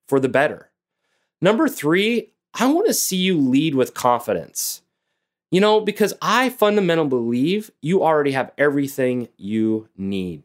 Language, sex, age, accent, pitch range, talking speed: English, male, 30-49, American, 120-165 Hz, 145 wpm